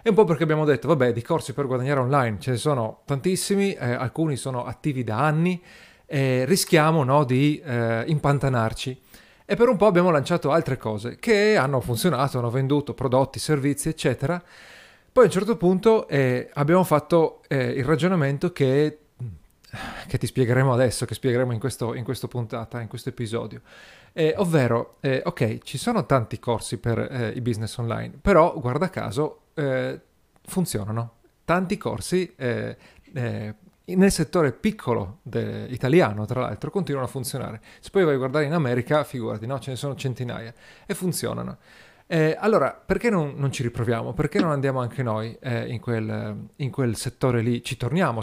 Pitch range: 120-160 Hz